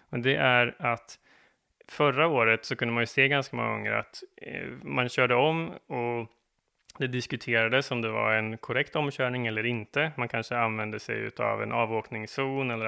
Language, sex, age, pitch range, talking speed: Swedish, male, 20-39, 110-130 Hz, 170 wpm